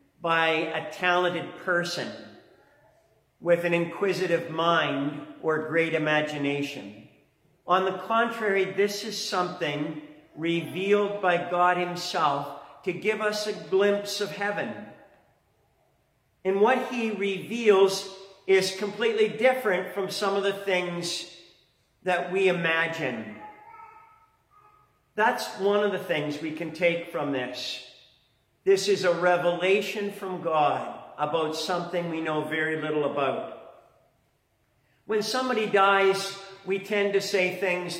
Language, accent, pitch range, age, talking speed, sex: English, American, 165-200 Hz, 50-69, 115 wpm, male